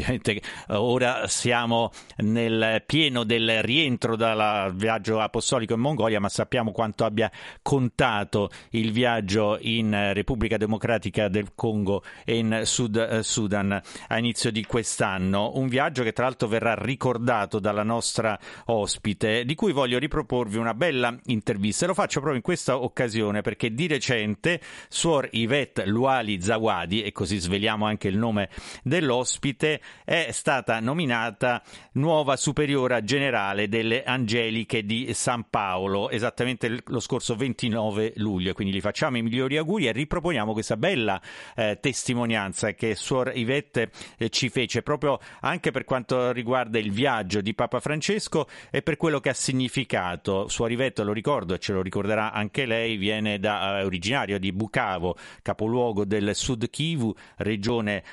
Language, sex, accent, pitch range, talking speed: Italian, male, native, 105-125 Hz, 145 wpm